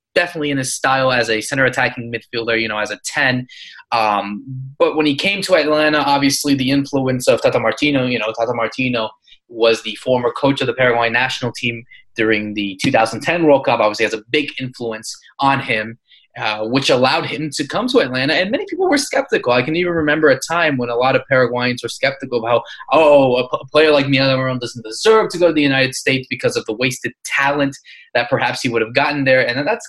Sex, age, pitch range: male, 20-39, 120-150 Hz